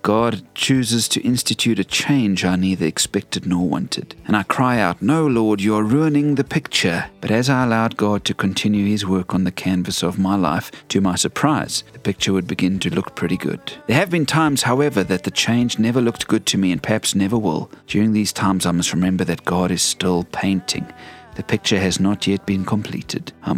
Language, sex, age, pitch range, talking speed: English, male, 40-59, 95-125 Hz, 215 wpm